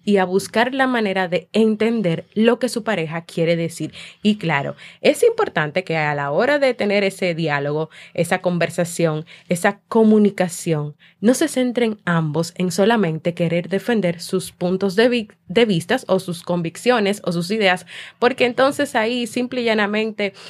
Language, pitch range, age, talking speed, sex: Spanish, 165-220 Hz, 20-39, 160 wpm, female